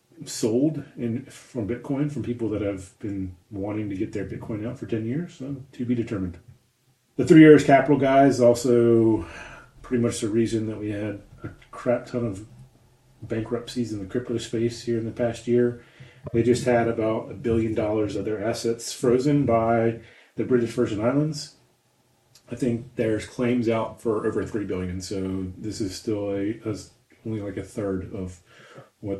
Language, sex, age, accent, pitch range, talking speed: English, male, 30-49, American, 105-125 Hz, 175 wpm